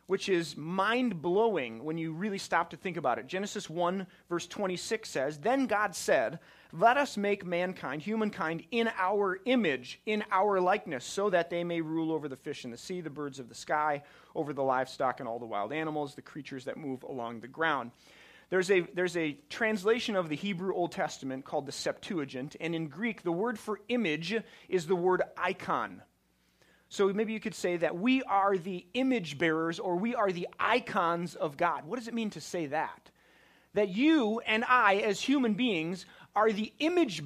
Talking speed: 190 wpm